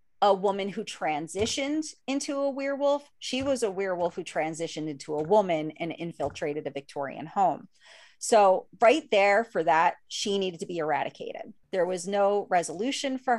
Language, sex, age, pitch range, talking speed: English, female, 30-49, 170-220 Hz, 160 wpm